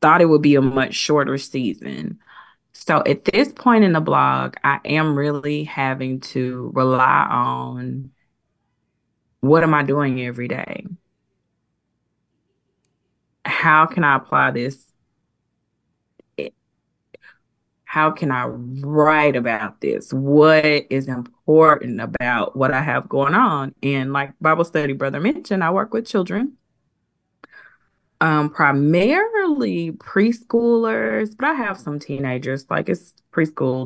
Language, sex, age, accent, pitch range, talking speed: English, female, 20-39, American, 130-170 Hz, 120 wpm